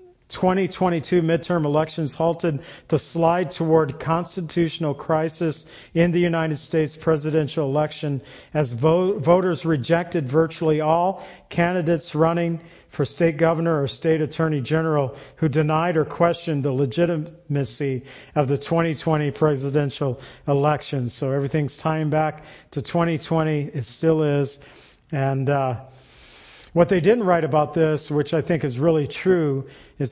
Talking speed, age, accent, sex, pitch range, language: 130 wpm, 50-69, American, male, 140-165 Hz, English